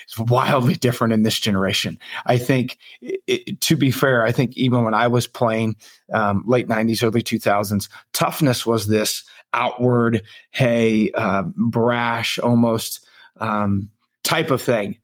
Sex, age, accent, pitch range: male, 30-49, American, 110-130 Hz